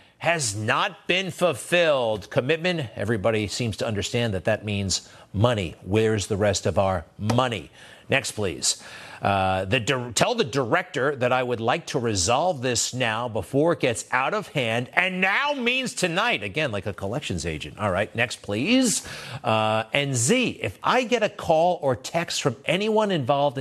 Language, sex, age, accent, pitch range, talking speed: English, male, 50-69, American, 115-170 Hz, 165 wpm